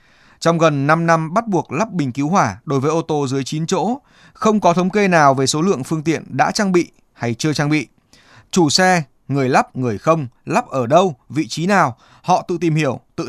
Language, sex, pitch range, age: Vietnamese, male, 130-185 Hz, 20-39